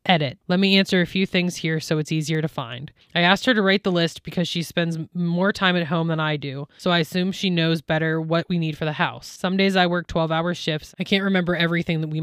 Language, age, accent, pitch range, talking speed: English, 20-39, American, 155-180 Hz, 265 wpm